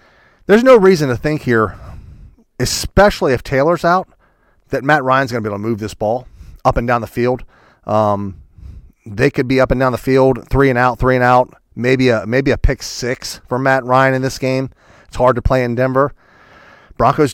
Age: 40-59